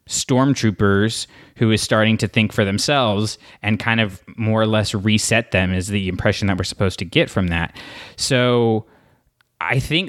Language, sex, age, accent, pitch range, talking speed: English, male, 20-39, American, 105-125 Hz, 175 wpm